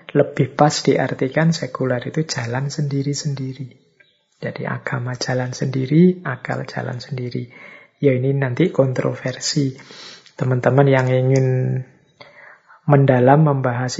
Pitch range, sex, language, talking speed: 130-155 Hz, male, Indonesian, 100 wpm